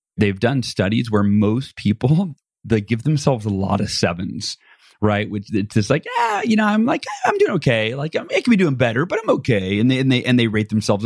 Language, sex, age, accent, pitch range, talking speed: English, male, 30-49, American, 105-130 Hz, 245 wpm